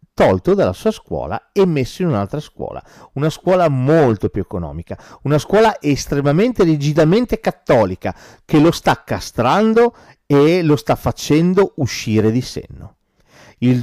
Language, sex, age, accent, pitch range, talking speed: Italian, male, 40-59, native, 110-165 Hz, 135 wpm